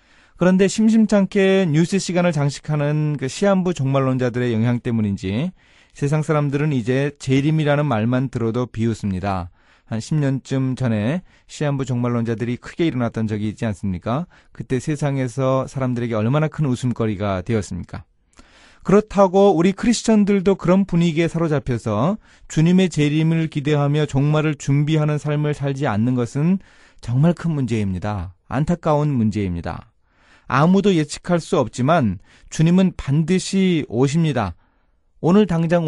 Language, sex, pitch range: Korean, male, 120-170 Hz